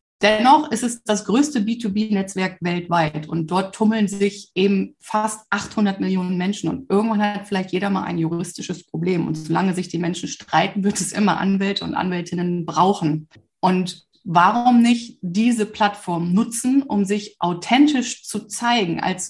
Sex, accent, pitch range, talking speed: female, German, 180-220 Hz, 155 wpm